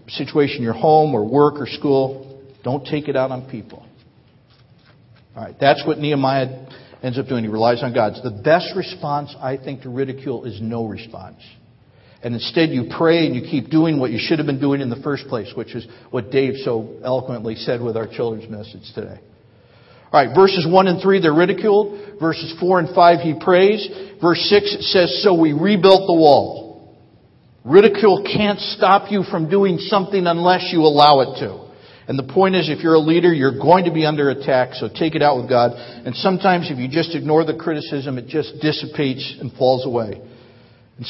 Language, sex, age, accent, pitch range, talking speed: English, male, 50-69, American, 125-165 Hz, 195 wpm